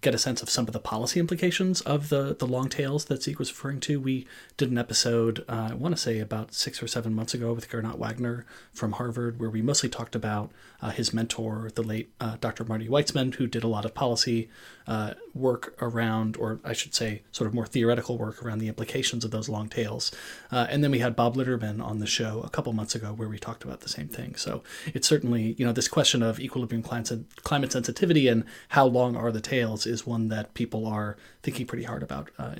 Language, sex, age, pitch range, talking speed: English, male, 30-49, 115-135 Hz, 235 wpm